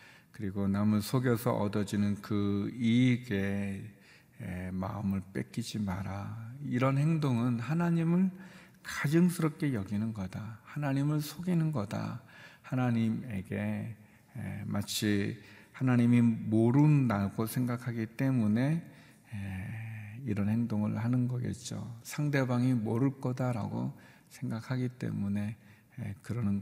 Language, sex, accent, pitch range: Korean, male, native, 105-125 Hz